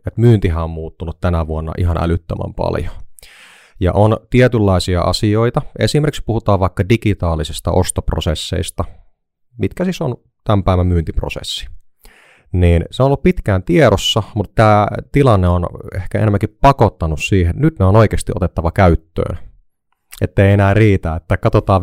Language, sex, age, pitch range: Finnish, male, 30-49, 85-105 Hz